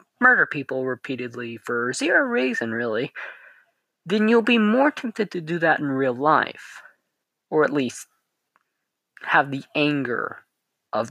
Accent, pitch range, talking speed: American, 135-215 Hz, 135 wpm